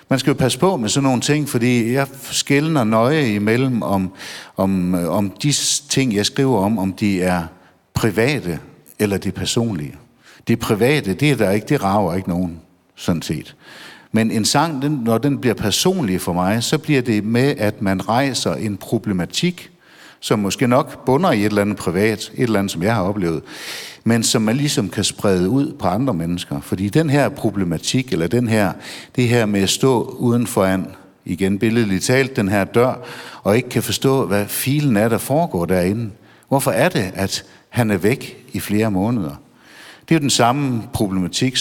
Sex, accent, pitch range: male, native, 95-135 Hz